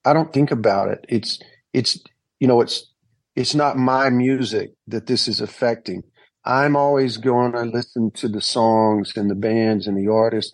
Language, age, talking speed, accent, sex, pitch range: English, 40-59, 180 wpm, American, male, 115-140 Hz